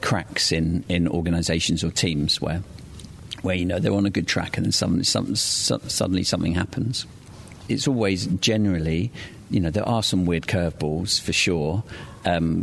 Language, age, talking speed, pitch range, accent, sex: English, 40-59, 170 wpm, 80-95 Hz, British, male